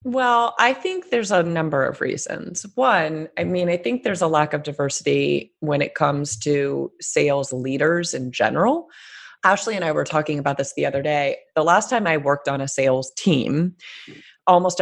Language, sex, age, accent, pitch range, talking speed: English, female, 30-49, American, 135-170 Hz, 185 wpm